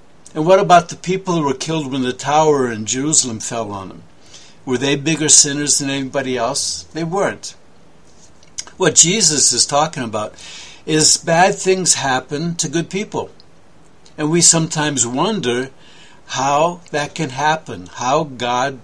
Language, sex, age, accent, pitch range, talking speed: English, male, 60-79, American, 125-160 Hz, 150 wpm